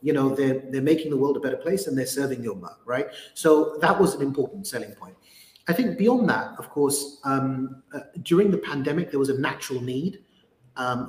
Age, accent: 30-49, British